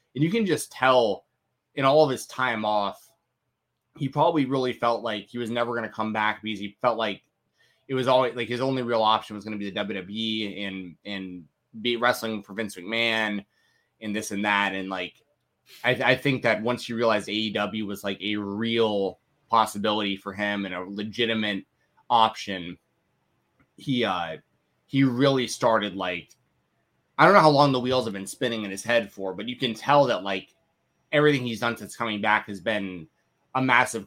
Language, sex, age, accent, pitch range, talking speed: English, male, 20-39, American, 100-130 Hz, 190 wpm